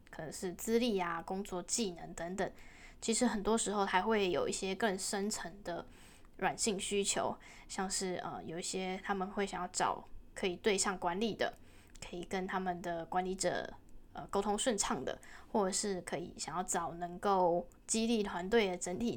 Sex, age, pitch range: female, 10-29, 185-225 Hz